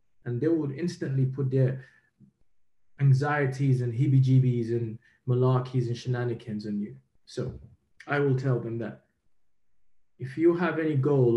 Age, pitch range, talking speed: 20-39, 120-150 Hz, 135 wpm